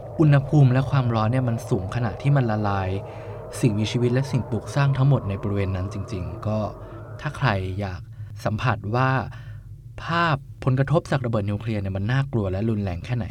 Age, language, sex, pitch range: 20-39, Thai, male, 105-125 Hz